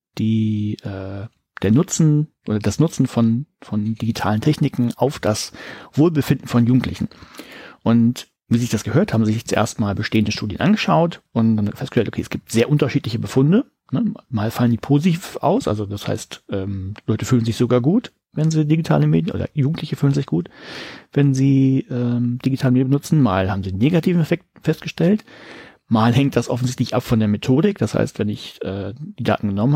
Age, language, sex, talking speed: 40-59, German, male, 180 wpm